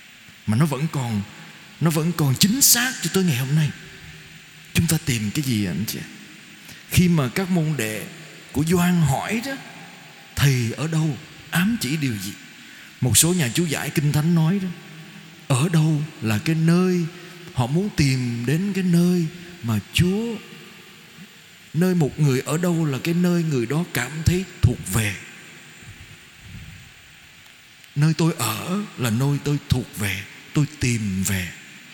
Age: 20-39